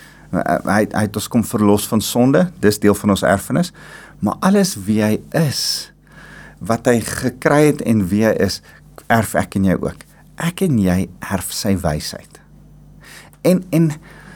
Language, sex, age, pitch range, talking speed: English, male, 40-59, 100-155 Hz, 160 wpm